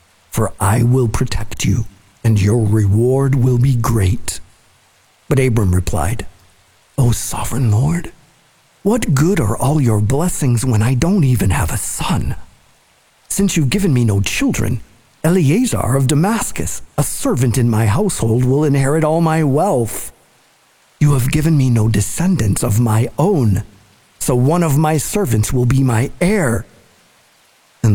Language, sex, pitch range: English, male, 100-135 Hz